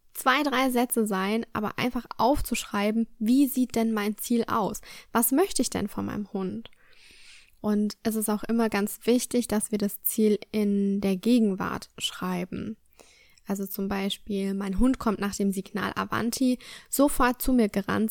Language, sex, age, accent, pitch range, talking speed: German, female, 10-29, German, 200-245 Hz, 160 wpm